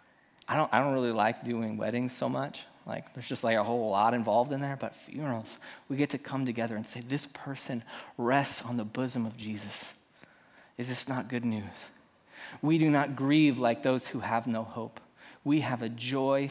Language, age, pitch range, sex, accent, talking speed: English, 30-49, 125-175 Hz, male, American, 200 wpm